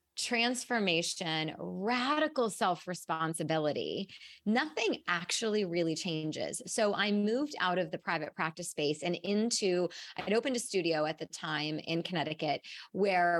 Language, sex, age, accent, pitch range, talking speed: English, female, 30-49, American, 165-210 Hz, 130 wpm